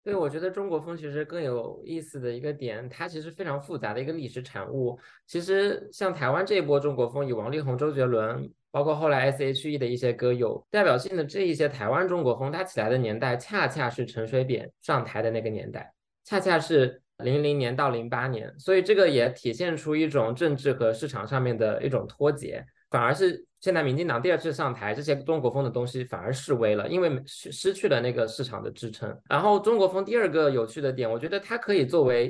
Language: Chinese